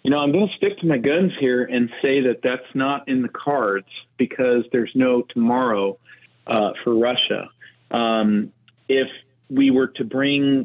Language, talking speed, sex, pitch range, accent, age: English, 175 wpm, male, 110-135 Hz, American, 40-59